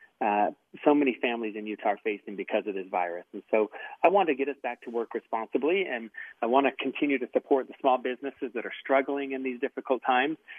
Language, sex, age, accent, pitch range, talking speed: English, male, 40-59, American, 115-145 Hz, 225 wpm